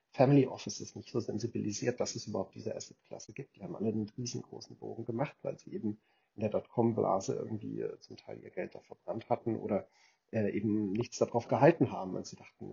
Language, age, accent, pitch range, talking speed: German, 40-59, German, 105-120 Hz, 195 wpm